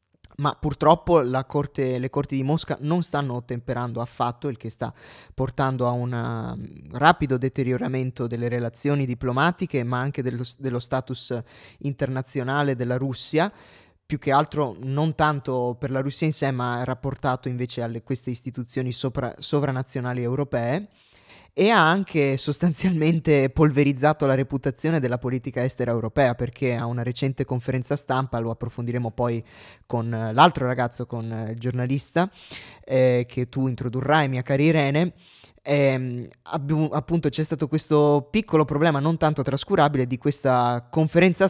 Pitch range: 125-150 Hz